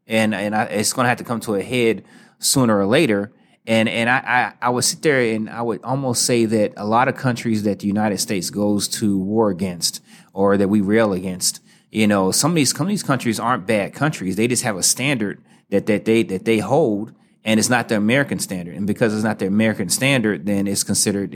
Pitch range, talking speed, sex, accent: 100-115 Hz, 240 wpm, male, American